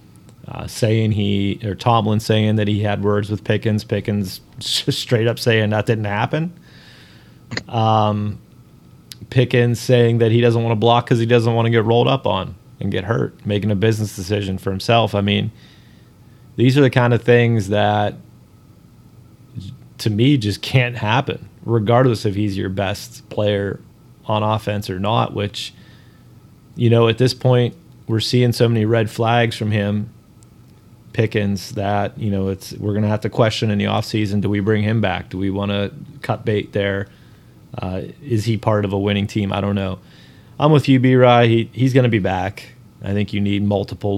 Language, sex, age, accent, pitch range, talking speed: English, male, 30-49, American, 100-120 Hz, 185 wpm